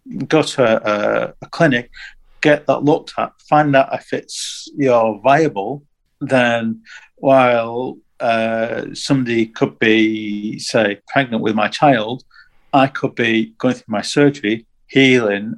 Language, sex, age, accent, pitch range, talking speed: English, male, 50-69, British, 115-140 Hz, 135 wpm